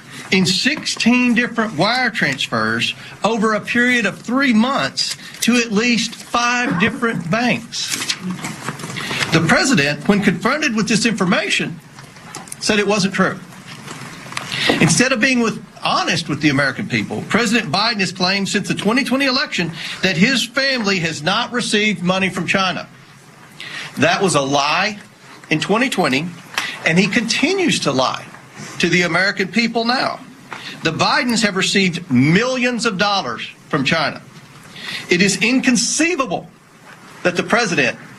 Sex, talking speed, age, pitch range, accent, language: male, 135 wpm, 40-59, 165-230 Hz, American, English